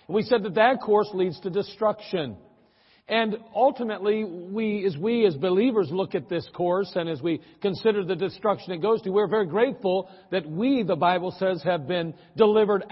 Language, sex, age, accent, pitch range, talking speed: English, male, 50-69, American, 185-225 Hz, 180 wpm